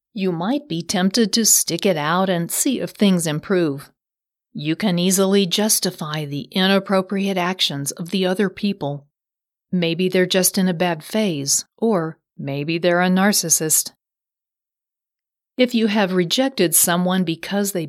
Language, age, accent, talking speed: English, 40-59, American, 145 wpm